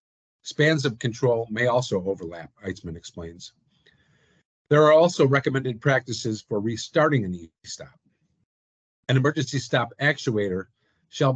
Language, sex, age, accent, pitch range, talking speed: English, male, 50-69, American, 105-140 Hz, 115 wpm